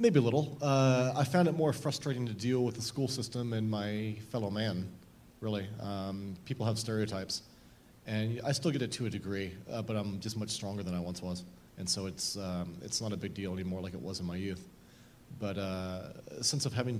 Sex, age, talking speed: male, 30-49, 225 wpm